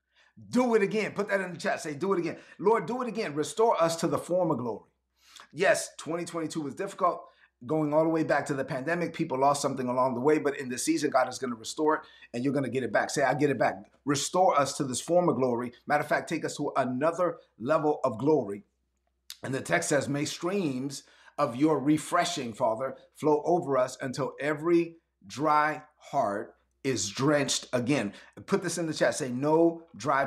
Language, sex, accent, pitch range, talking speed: English, male, American, 140-175 Hz, 210 wpm